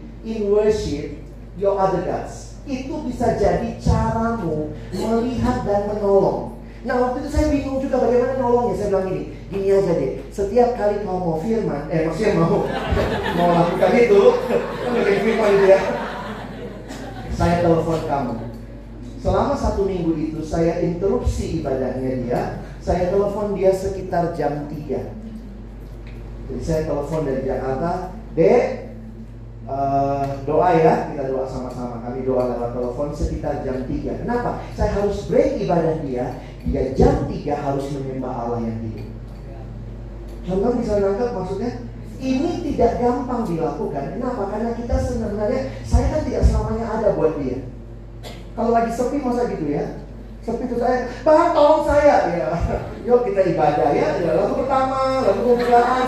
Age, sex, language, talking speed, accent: 30-49, male, Indonesian, 140 wpm, native